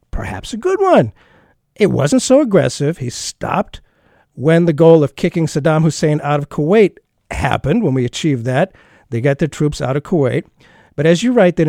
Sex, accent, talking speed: male, American, 190 wpm